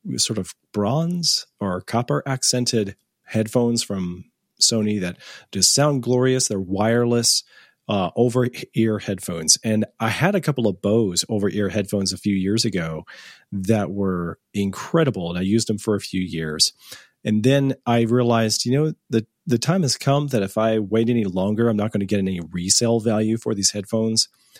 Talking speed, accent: 175 wpm, American